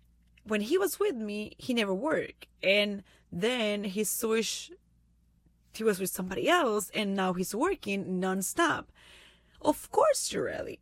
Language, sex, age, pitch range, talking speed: English, female, 30-49, 190-245 Hz, 145 wpm